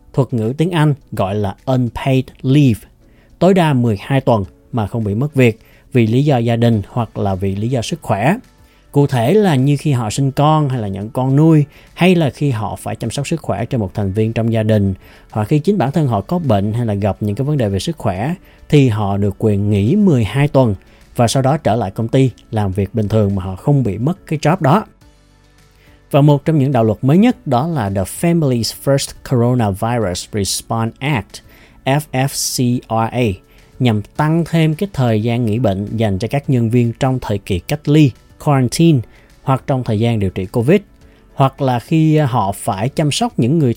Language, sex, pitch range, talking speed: Vietnamese, male, 110-145 Hz, 210 wpm